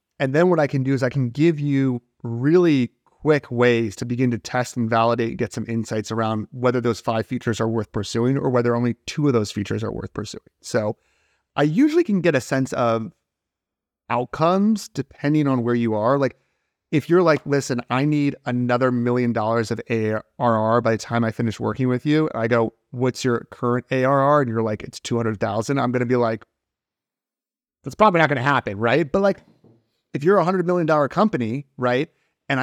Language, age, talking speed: English, 30-49, 200 wpm